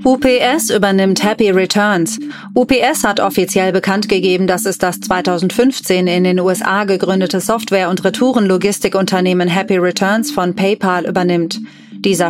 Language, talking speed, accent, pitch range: German, 125 wpm, German, 185-220 Hz